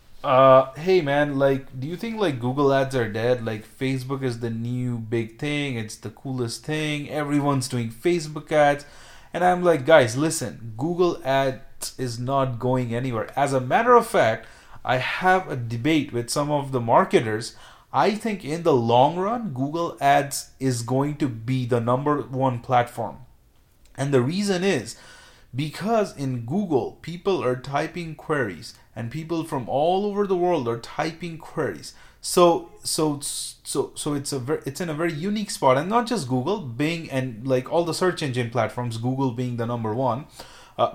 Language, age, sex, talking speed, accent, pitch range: English, 30-49, male, 175 wpm, Indian, 125-165 Hz